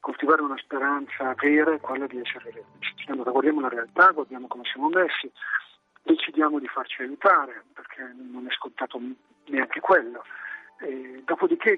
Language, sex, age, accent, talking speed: Italian, male, 40-59, native, 155 wpm